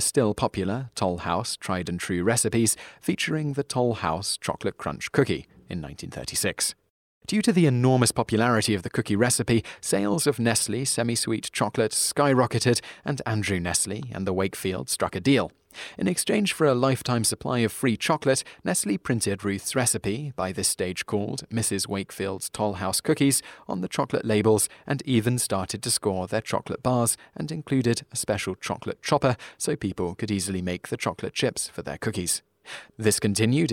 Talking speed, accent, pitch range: 160 wpm, British, 100-130 Hz